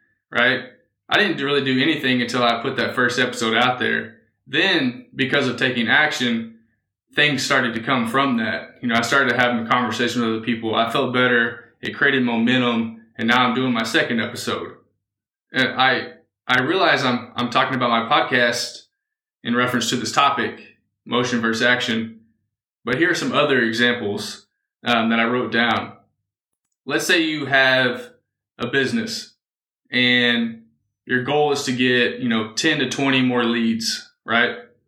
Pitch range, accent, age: 115-135 Hz, American, 20-39